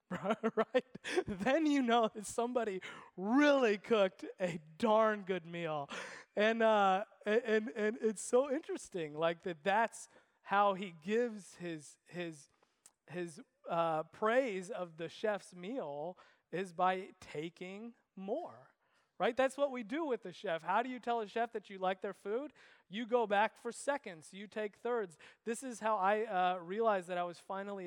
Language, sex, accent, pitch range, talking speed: English, male, American, 170-230 Hz, 165 wpm